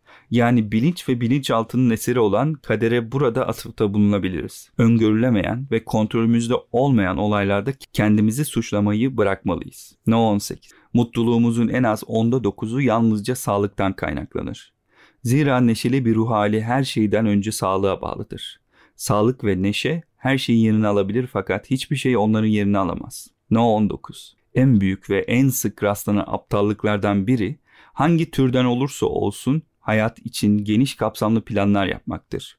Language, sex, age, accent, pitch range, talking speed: Turkish, male, 40-59, native, 105-125 Hz, 130 wpm